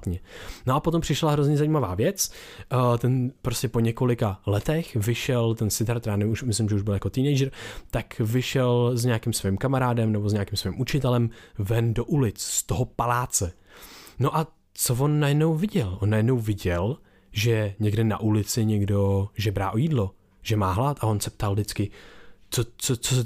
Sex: male